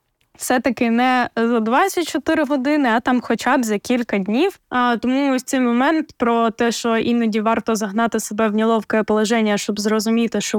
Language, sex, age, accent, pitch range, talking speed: Ukrainian, female, 10-29, native, 215-270 Hz, 170 wpm